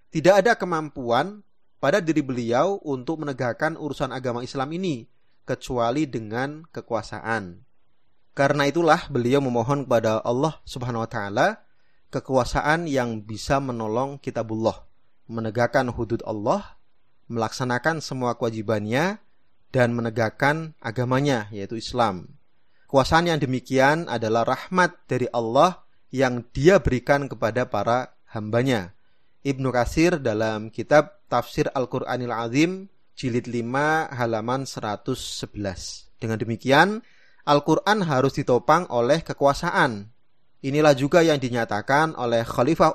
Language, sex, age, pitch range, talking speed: Indonesian, male, 30-49, 115-150 Hz, 110 wpm